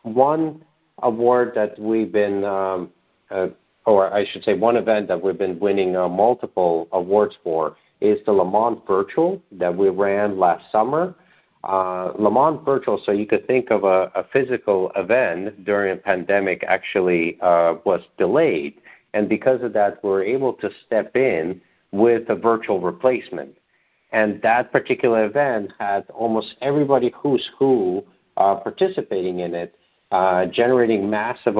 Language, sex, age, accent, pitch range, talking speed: English, male, 50-69, American, 95-120 Hz, 150 wpm